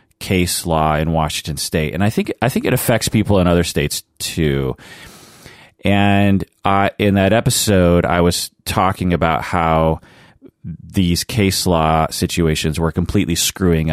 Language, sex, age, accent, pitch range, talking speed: English, male, 30-49, American, 80-100 Hz, 145 wpm